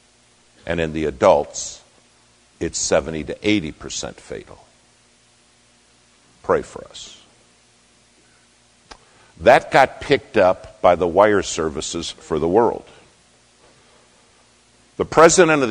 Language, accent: English, American